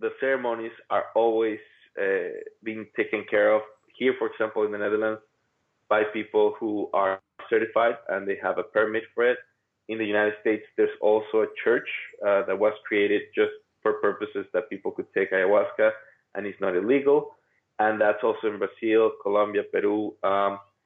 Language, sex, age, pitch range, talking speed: English, male, 20-39, 105-140 Hz, 170 wpm